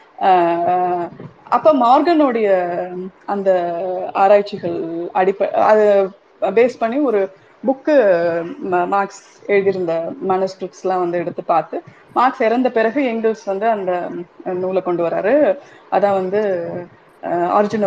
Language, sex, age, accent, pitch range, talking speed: Tamil, female, 20-39, native, 180-220 Hz, 95 wpm